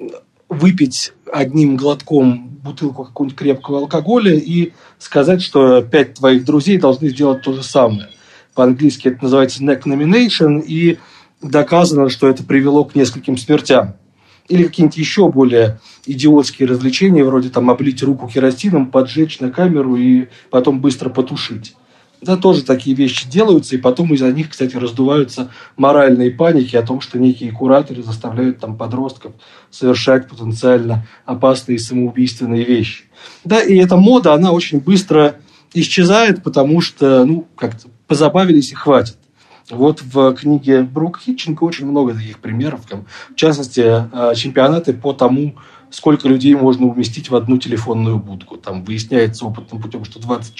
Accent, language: native, Russian